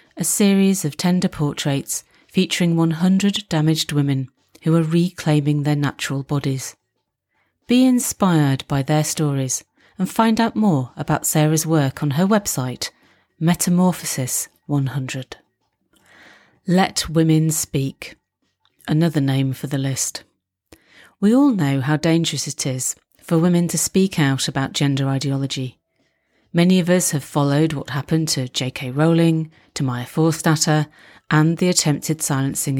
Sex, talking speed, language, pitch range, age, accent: female, 130 wpm, English, 135-170 Hz, 40-59, British